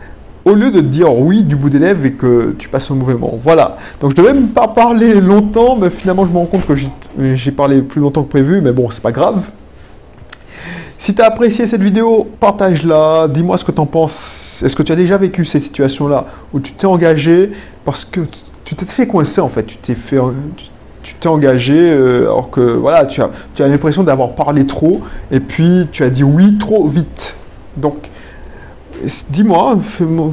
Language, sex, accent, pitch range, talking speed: French, male, French, 140-180 Hz, 205 wpm